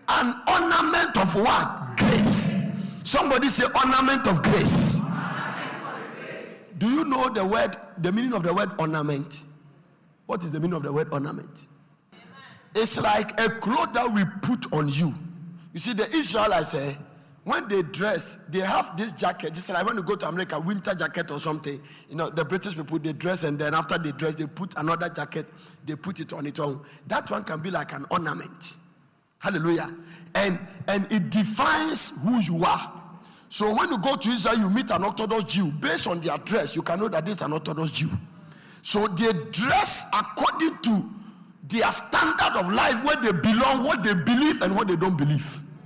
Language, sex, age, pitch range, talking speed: English, male, 50-69, 160-220 Hz, 185 wpm